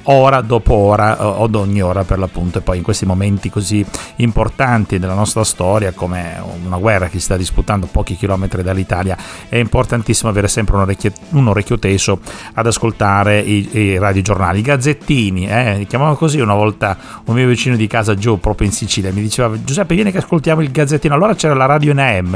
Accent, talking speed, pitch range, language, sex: native, 195 wpm, 100-120 Hz, Italian, male